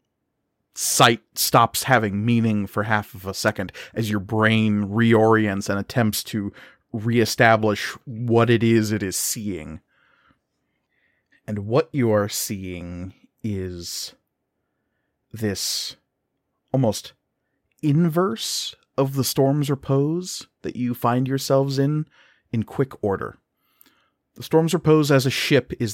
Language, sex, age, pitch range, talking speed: English, male, 30-49, 105-125 Hz, 120 wpm